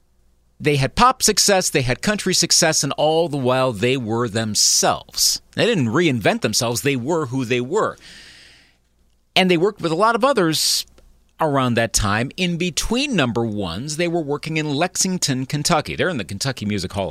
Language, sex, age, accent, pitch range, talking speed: English, male, 40-59, American, 120-170 Hz, 180 wpm